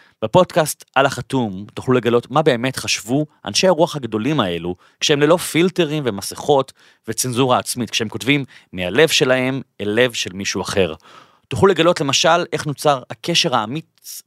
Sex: male